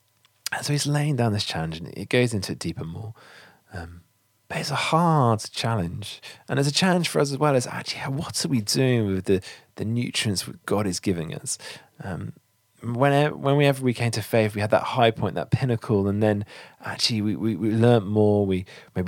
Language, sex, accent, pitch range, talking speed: English, male, British, 95-125 Hz, 220 wpm